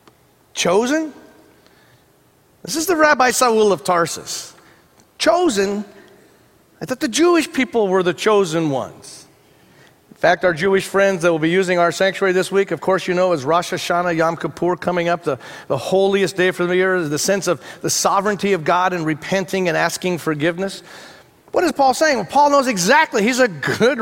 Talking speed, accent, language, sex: 180 wpm, American, English, male